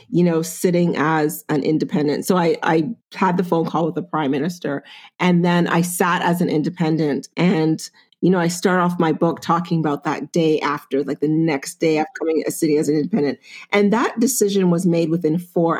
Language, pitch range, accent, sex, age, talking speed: English, 155-190 Hz, American, female, 40-59, 210 wpm